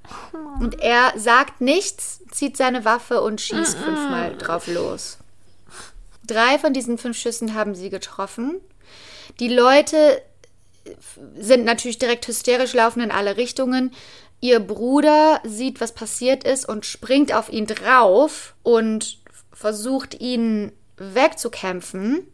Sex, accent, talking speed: female, German, 120 wpm